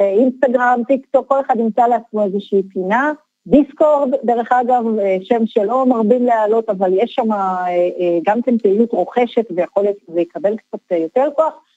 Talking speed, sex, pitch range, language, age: 150 wpm, female, 190-270 Hz, Hebrew, 40-59